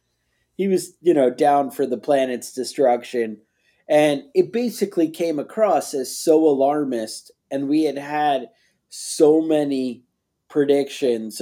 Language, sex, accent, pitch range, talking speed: English, male, American, 125-155 Hz, 125 wpm